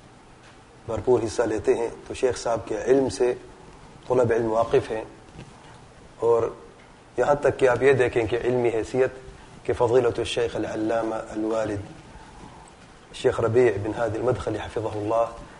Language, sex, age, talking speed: Urdu, male, 30-49, 100 wpm